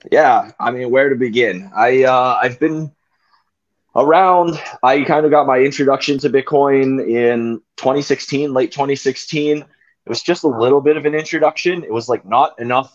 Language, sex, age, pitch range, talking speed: English, male, 20-39, 115-140 Hz, 170 wpm